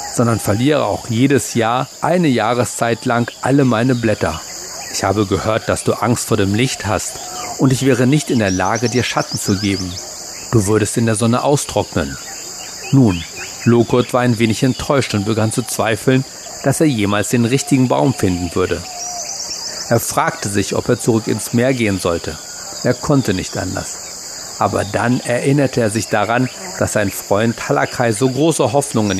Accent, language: German, German